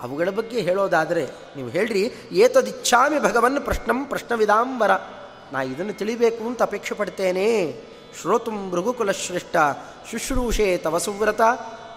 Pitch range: 180-240 Hz